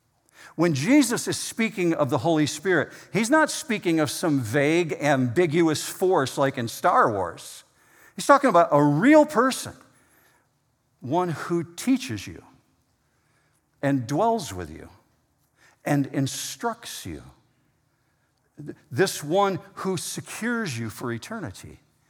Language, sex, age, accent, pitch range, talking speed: English, male, 50-69, American, 130-190 Hz, 120 wpm